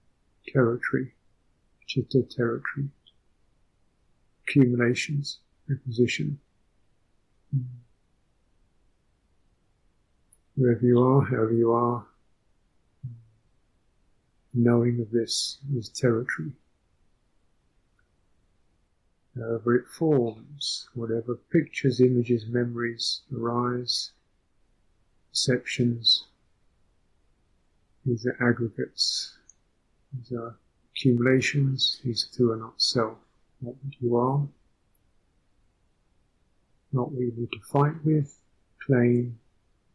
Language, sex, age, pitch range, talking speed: English, male, 50-69, 105-130 Hz, 75 wpm